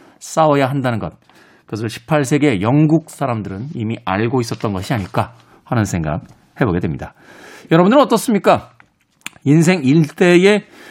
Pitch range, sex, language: 130-190 Hz, male, Korean